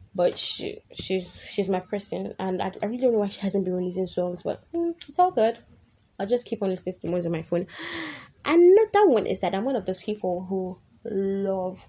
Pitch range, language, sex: 180-225 Hz, English, female